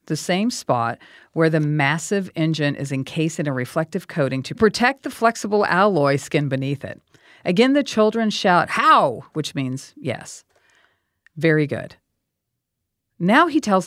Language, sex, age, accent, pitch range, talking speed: English, female, 40-59, American, 135-175 Hz, 145 wpm